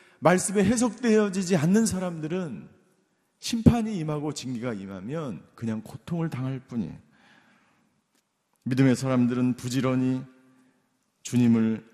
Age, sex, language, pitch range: 40-59, male, Korean, 115-175 Hz